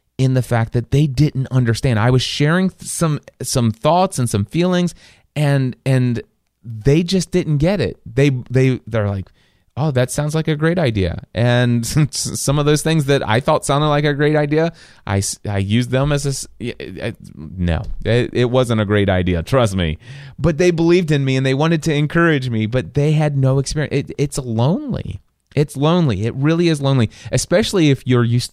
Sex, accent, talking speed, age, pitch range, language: male, American, 195 wpm, 30-49, 105-145 Hz, English